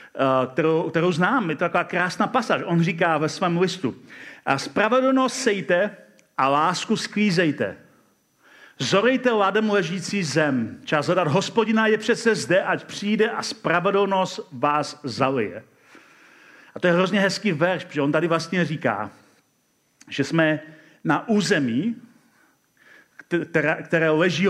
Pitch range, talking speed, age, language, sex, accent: 155-200 Hz, 125 wpm, 40-59, Czech, male, native